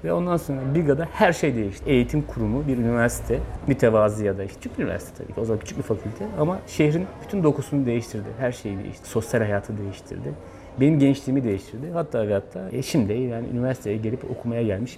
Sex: male